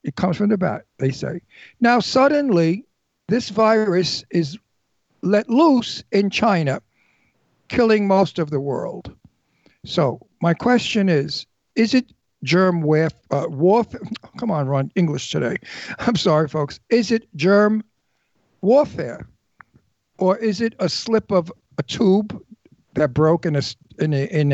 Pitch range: 150-205 Hz